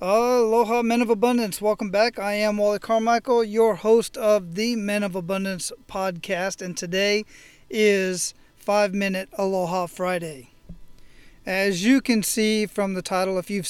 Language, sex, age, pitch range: English, male, 40-59, 185-215 Hz